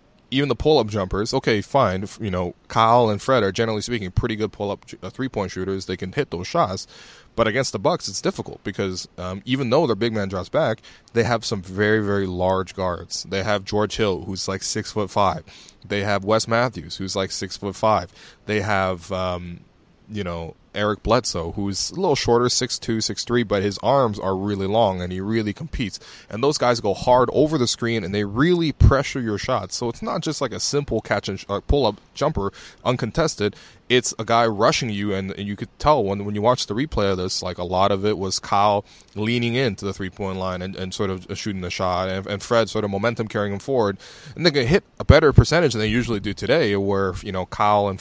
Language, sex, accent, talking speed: English, male, American, 225 wpm